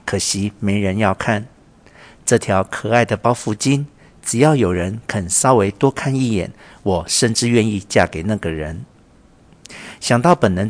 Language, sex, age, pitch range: Chinese, male, 50-69, 100-125 Hz